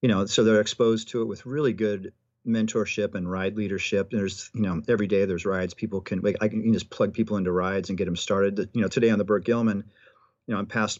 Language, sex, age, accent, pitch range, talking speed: English, male, 40-59, American, 95-110 Hz, 245 wpm